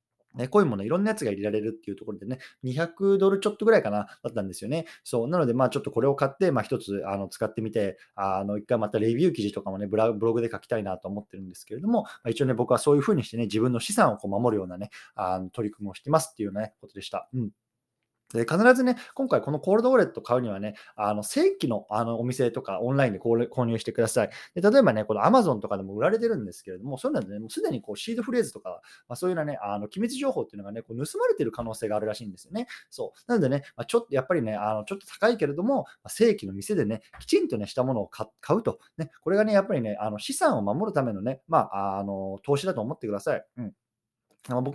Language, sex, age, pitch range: Japanese, male, 20-39, 105-170 Hz